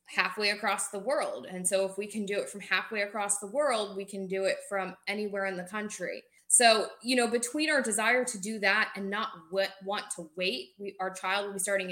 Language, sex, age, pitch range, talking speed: English, female, 20-39, 190-225 Hz, 220 wpm